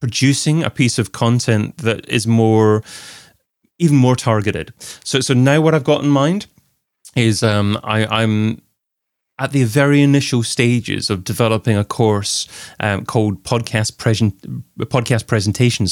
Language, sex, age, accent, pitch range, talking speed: English, male, 30-49, British, 110-135 Hz, 145 wpm